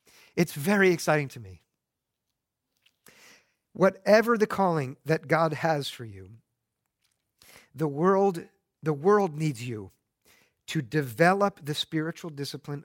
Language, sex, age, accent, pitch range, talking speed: English, male, 50-69, American, 135-170 Hz, 105 wpm